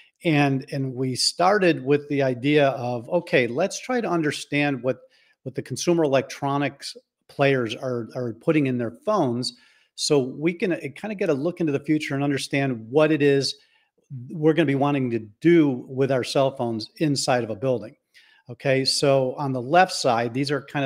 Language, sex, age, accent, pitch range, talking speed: English, male, 50-69, American, 120-145 Hz, 185 wpm